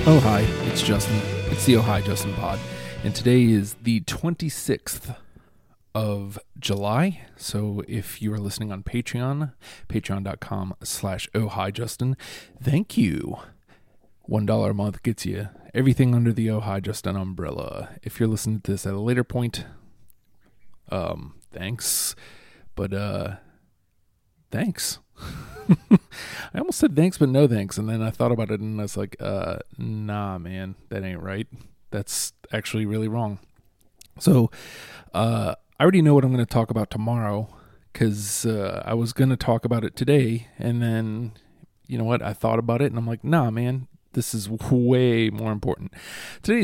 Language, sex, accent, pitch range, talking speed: English, male, American, 100-125 Hz, 160 wpm